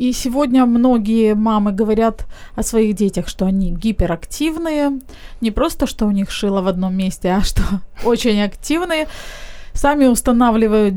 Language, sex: Ukrainian, female